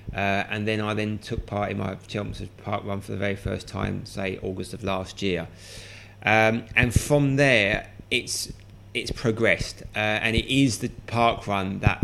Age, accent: 30-49, British